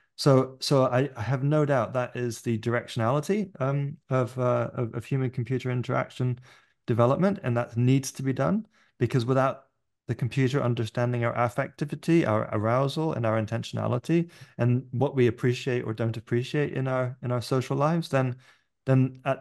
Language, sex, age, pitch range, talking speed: English, male, 30-49, 115-140 Hz, 165 wpm